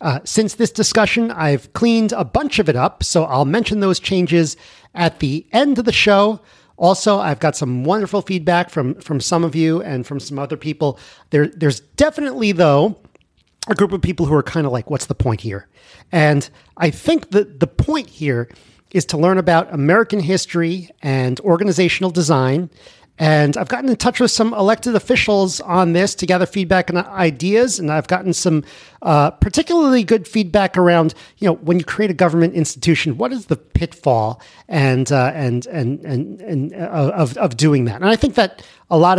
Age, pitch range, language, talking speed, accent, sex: 40-59, 140-195 Hz, English, 190 wpm, American, male